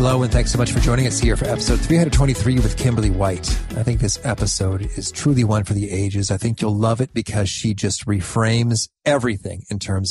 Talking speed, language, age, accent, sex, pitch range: 220 wpm, English, 40-59, American, male, 100-125 Hz